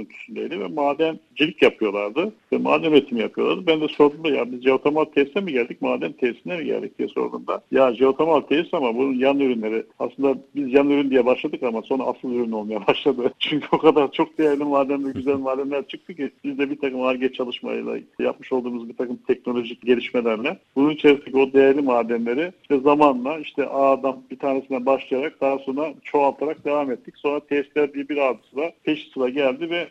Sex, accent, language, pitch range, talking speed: male, native, Turkish, 125-150 Hz, 180 wpm